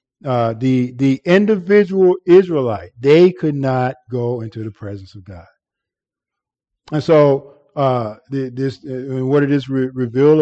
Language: English